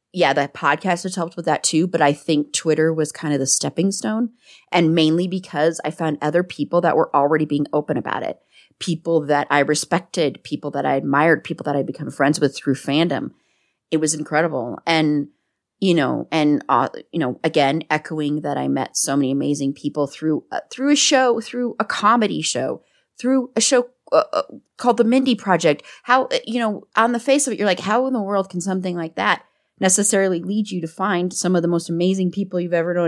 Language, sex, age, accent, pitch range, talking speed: English, female, 30-49, American, 155-190 Hz, 210 wpm